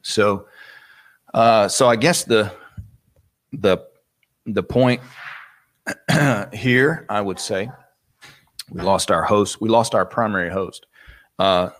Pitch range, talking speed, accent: 90-115 Hz, 115 wpm, American